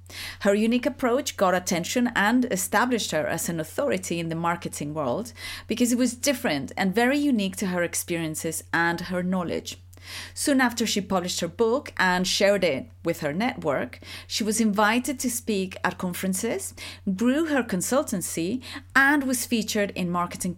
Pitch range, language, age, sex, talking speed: 155-220 Hz, English, 30-49, female, 160 wpm